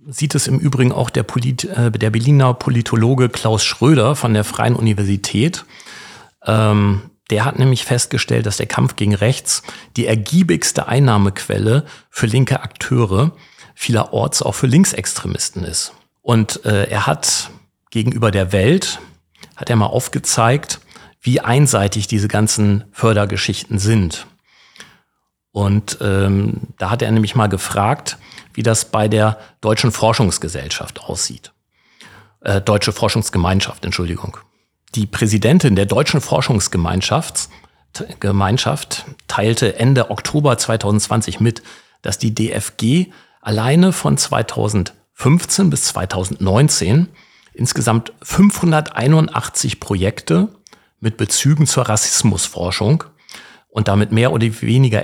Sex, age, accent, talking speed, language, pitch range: male, 40-59, German, 110 wpm, German, 105-130 Hz